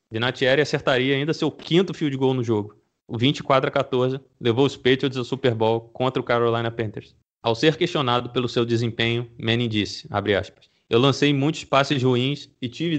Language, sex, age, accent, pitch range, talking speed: Portuguese, male, 20-39, Brazilian, 115-135 Hz, 190 wpm